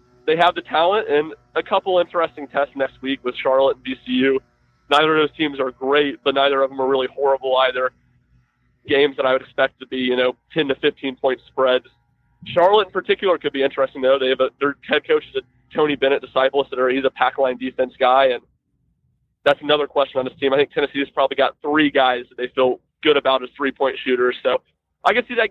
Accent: American